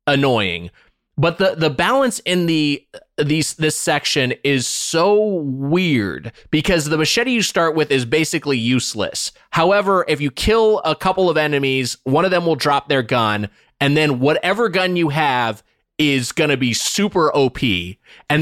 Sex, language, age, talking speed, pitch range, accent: male, English, 20-39, 165 wpm, 135-175 Hz, American